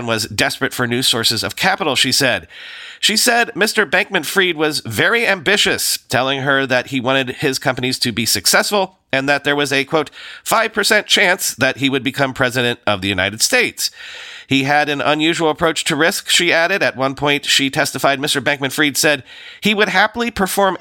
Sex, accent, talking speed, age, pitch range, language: male, American, 185 wpm, 40-59, 130-180 Hz, English